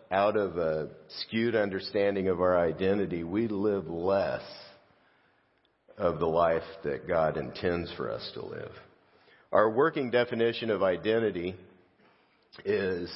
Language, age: English, 50-69